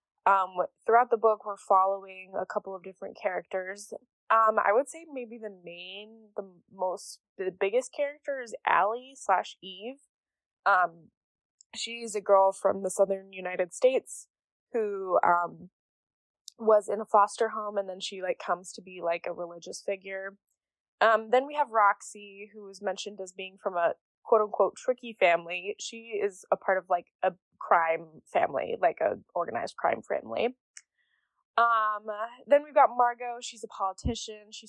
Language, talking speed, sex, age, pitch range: English, 160 wpm, female, 10-29, 185-230 Hz